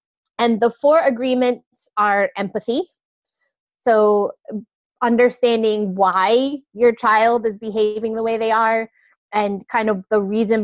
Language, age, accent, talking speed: English, 20-39, American, 125 wpm